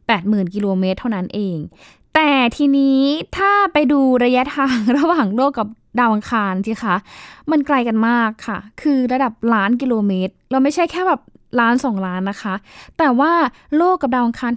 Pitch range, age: 195-245 Hz, 10-29